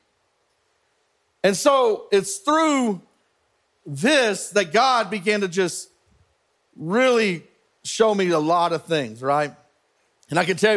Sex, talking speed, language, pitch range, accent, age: male, 125 wpm, English, 170-215 Hz, American, 40-59